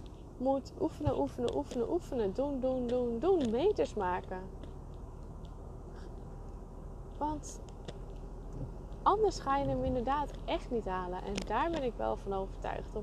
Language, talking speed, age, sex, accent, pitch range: Dutch, 130 wpm, 20-39, female, Dutch, 185-245 Hz